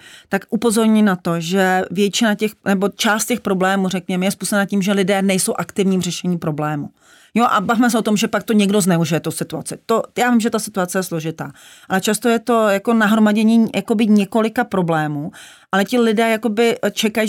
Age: 40-59